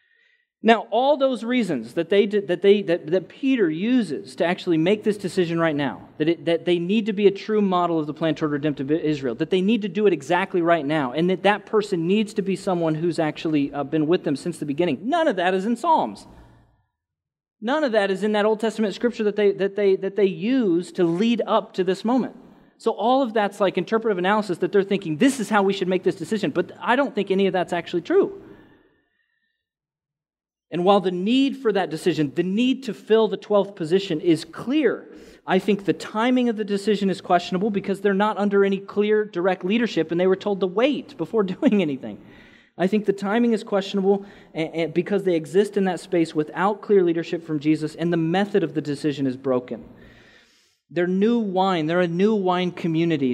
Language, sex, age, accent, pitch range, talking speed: English, male, 30-49, American, 165-215 Hz, 215 wpm